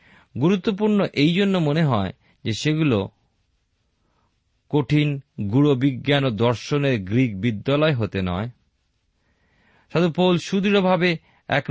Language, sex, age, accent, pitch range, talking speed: Bengali, male, 40-59, native, 105-155 Hz, 90 wpm